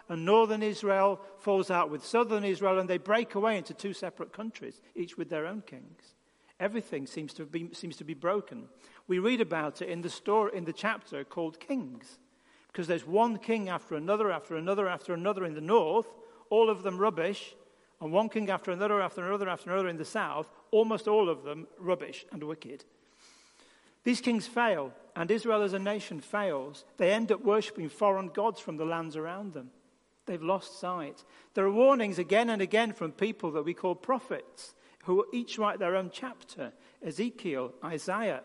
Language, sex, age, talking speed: English, male, 40-59, 190 wpm